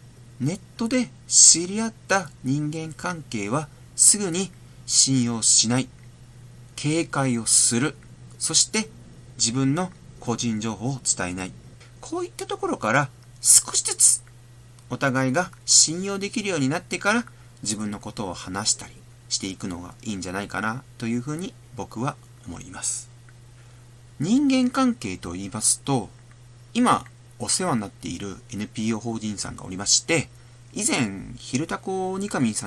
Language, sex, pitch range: Japanese, male, 120-140 Hz